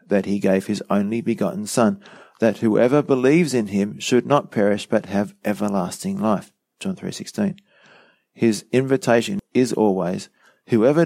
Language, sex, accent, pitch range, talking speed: English, male, Australian, 105-145 Hz, 140 wpm